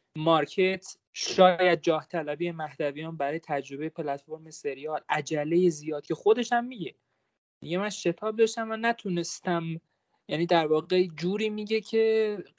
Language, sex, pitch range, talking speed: Persian, male, 165-220 Hz, 125 wpm